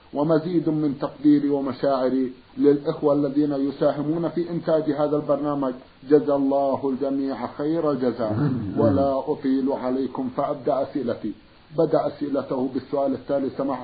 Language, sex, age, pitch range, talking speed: Arabic, male, 50-69, 135-160 Hz, 115 wpm